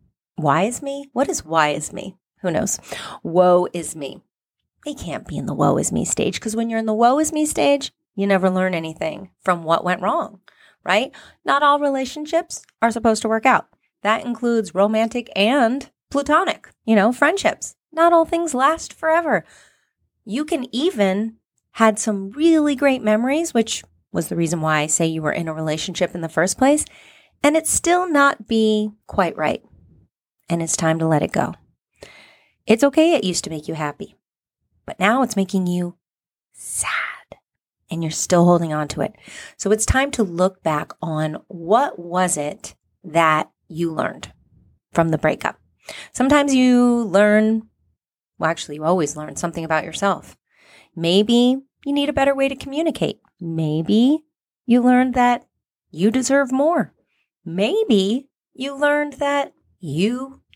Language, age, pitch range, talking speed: English, 30-49, 170-275 Hz, 165 wpm